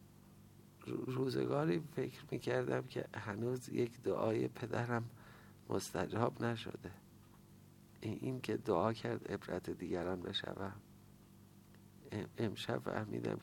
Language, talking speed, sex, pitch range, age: Persian, 85 wpm, male, 95-120 Hz, 50-69